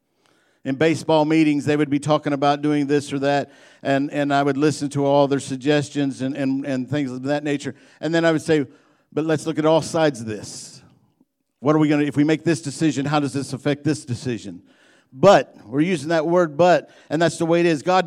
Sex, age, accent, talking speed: male, 50-69, American, 230 wpm